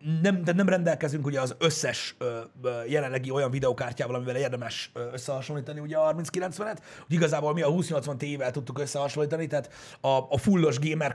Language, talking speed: Hungarian, 160 wpm